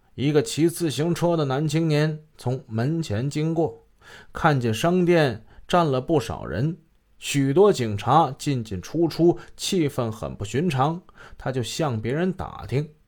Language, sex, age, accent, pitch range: Chinese, male, 20-39, native, 125-170 Hz